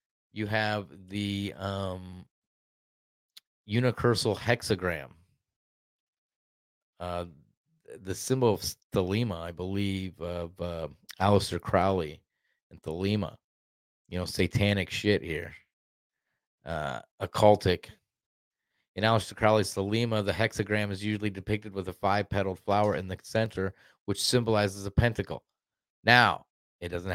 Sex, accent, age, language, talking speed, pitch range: male, American, 30-49, English, 110 wpm, 90-110 Hz